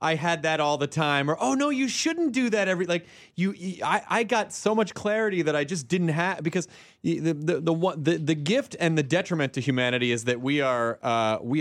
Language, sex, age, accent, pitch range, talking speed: English, male, 30-49, American, 110-155 Hz, 235 wpm